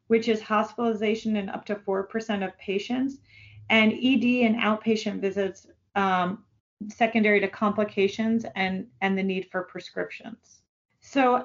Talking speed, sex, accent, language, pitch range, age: 130 wpm, female, American, English, 200-240 Hz, 40-59